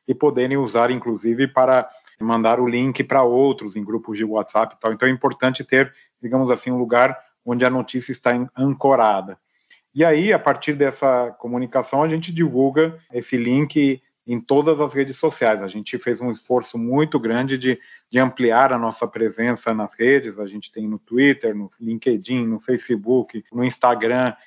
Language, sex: Portuguese, male